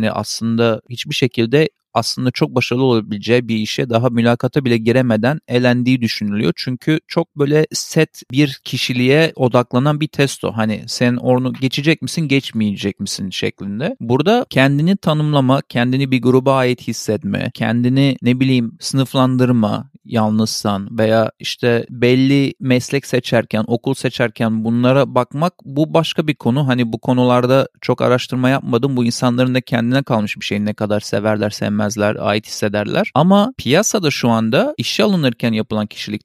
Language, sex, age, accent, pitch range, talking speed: Turkish, male, 40-59, native, 115-150 Hz, 145 wpm